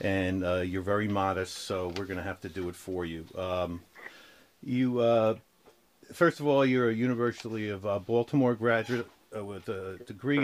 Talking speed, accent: 185 wpm, American